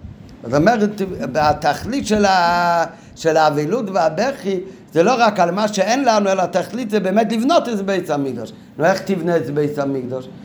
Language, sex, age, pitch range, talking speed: Hebrew, male, 60-79, 145-195 Hz, 155 wpm